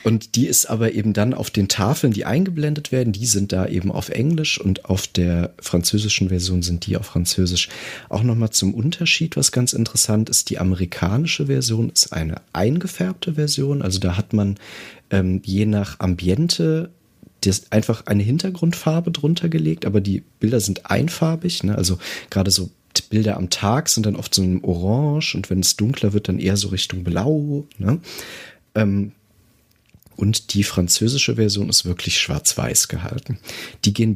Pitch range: 95-135 Hz